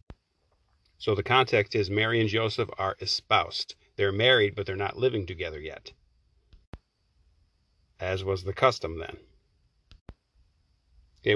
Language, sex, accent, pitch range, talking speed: English, male, American, 90-125 Hz, 120 wpm